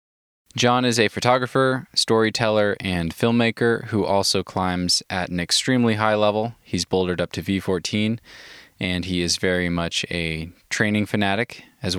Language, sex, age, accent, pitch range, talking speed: English, male, 20-39, American, 85-110 Hz, 145 wpm